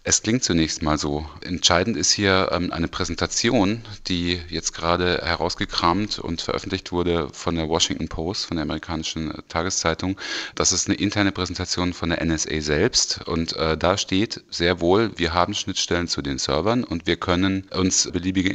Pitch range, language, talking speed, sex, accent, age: 80-90 Hz, German, 160 wpm, male, German, 30-49